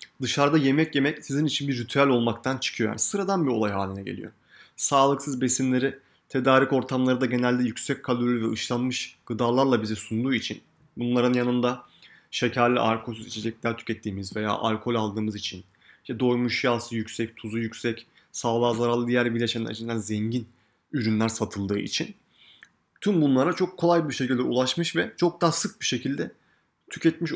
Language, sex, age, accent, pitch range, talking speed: Turkish, male, 30-49, native, 120-140 Hz, 150 wpm